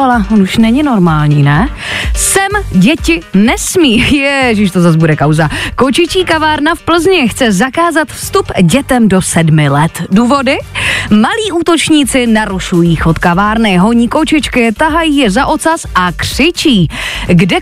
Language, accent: Czech, native